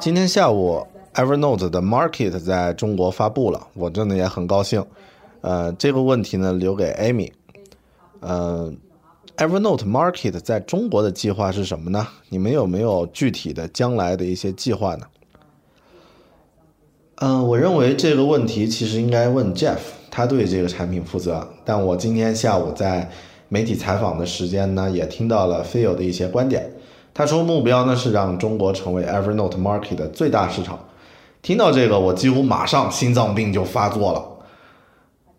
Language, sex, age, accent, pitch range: Chinese, male, 20-39, native, 90-115 Hz